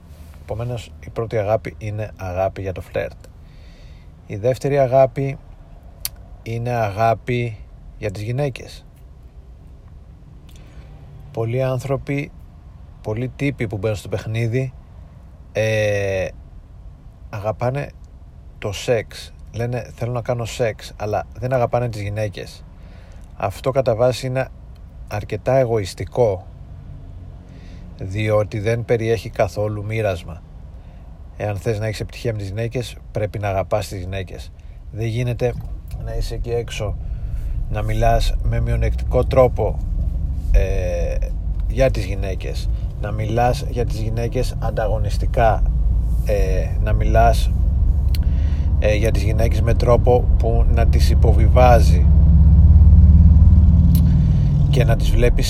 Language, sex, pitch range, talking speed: Greek, male, 80-115 Hz, 110 wpm